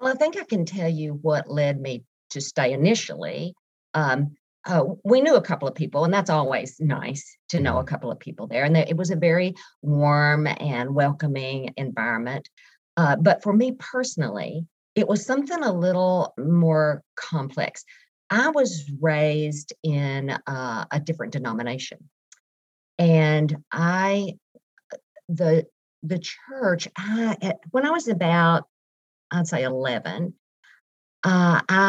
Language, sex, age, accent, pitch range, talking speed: English, female, 50-69, American, 145-205 Hz, 140 wpm